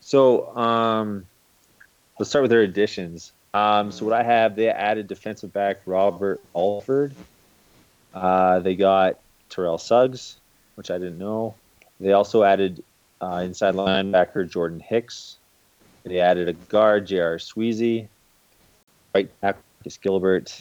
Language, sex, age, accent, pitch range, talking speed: English, male, 30-49, American, 90-110 Hz, 130 wpm